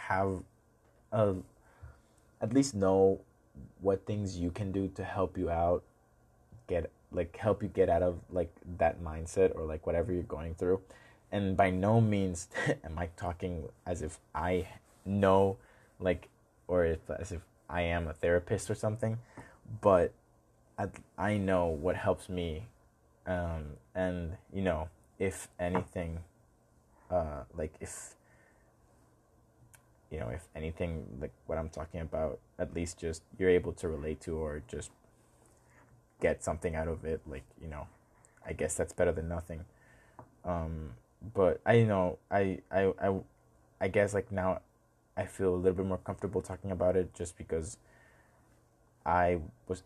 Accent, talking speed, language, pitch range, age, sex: American, 155 wpm, English, 85-100 Hz, 20-39, male